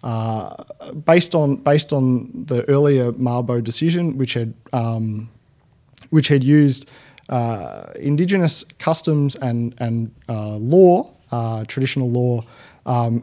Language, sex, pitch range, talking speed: English, male, 115-140 Hz, 120 wpm